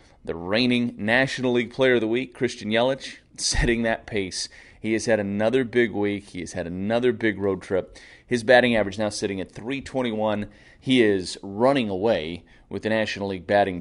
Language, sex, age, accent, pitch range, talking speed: English, male, 30-49, American, 90-115 Hz, 180 wpm